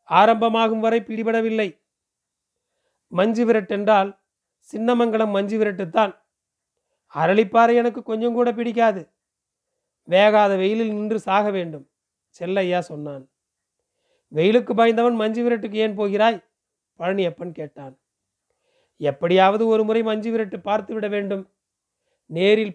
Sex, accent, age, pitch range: male, native, 40-59, 175-225 Hz